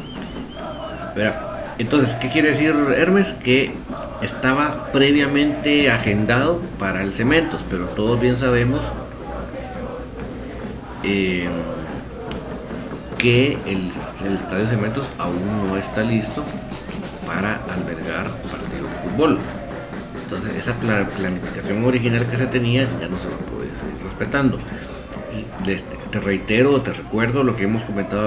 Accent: Mexican